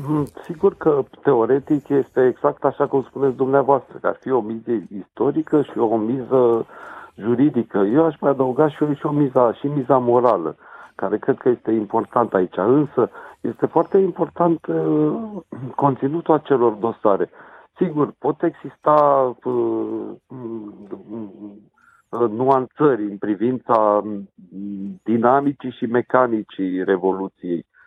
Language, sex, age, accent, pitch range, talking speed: Romanian, male, 50-69, native, 110-150 Hz, 120 wpm